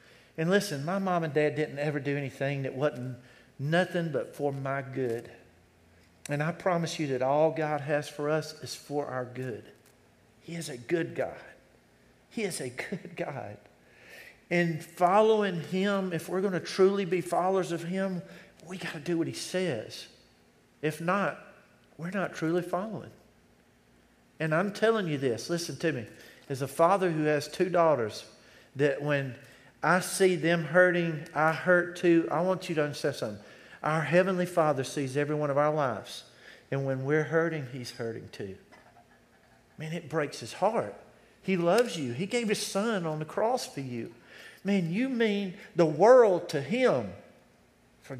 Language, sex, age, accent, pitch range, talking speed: English, male, 50-69, American, 140-180 Hz, 170 wpm